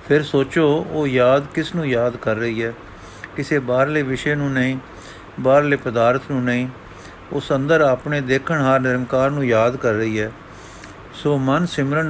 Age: 50-69